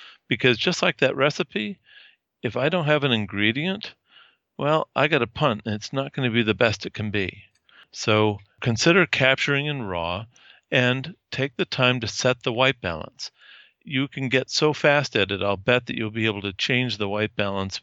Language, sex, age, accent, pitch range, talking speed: English, male, 50-69, American, 100-130 Hz, 200 wpm